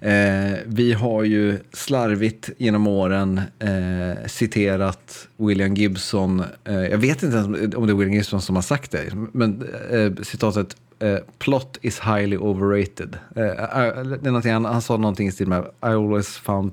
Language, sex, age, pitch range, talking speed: Swedish, male, 30-49, 100-115 Hz, 165 wpm